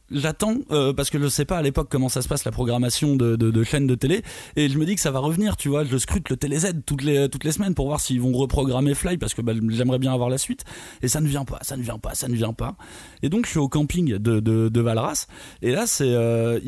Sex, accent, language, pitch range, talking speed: male, French, French, 120-150 Hz, 295 wpm